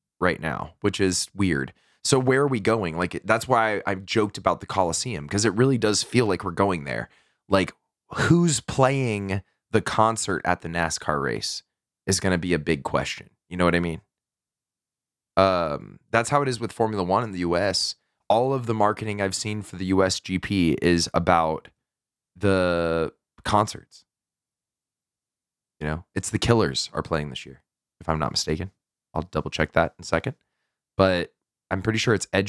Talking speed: 185 wpm